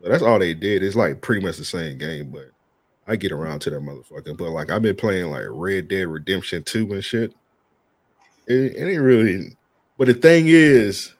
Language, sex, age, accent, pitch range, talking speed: English, male, 20-39, American, 105-140 Hz, 205 wpm